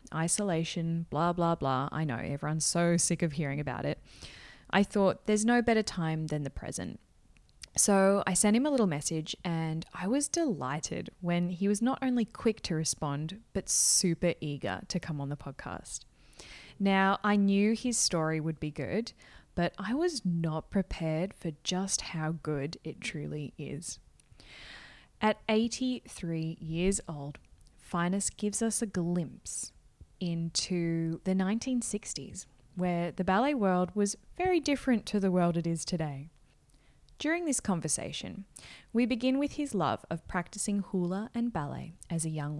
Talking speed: 155 wpm